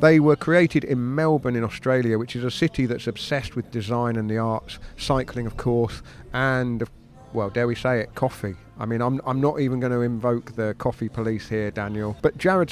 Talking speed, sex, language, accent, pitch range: 215 wpm, male, English, British, 115-140 Hz